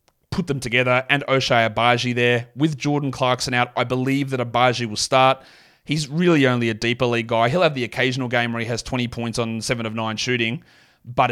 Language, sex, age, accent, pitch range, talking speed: English, male, 30-49, Australian, 120-140 Hz, 210 wpm